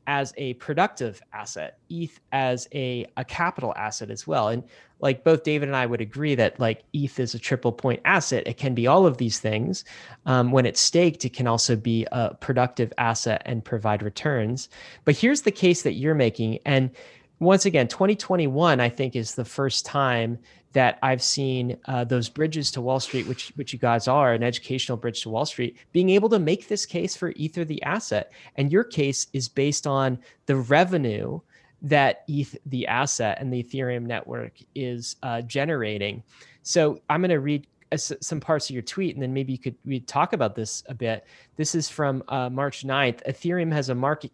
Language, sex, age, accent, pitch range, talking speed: English, male, 30-49, American, 120-150 Hz, 200 wpm